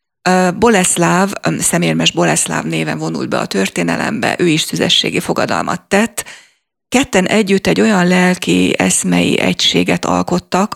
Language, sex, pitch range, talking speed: Hungarian, female, 155-190 Hz, 115 wpm